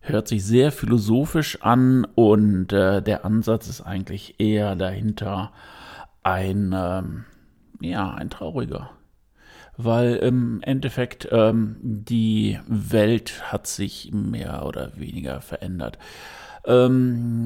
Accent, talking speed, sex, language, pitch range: German, 105 wpm, male, German, 100-120 Hz